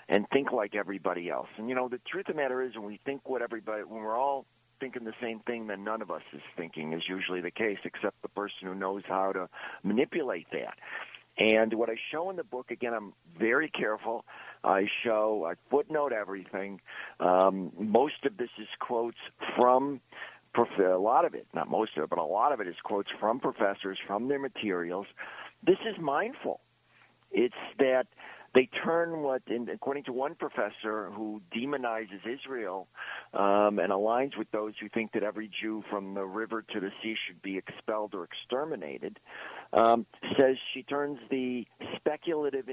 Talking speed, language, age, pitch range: 185 wpm, English, 50-69, 105-135 Hz